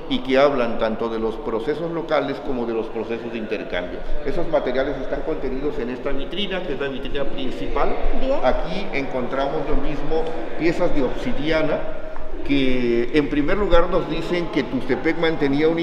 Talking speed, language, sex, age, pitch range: 165 wpm, Spanish, male, 50-69, 125-160 Hz